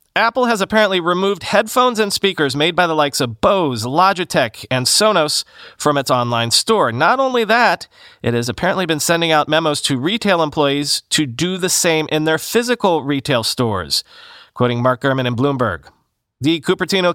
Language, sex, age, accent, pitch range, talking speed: English, male, 30-49, American, 135-185 Hz, 170 wpm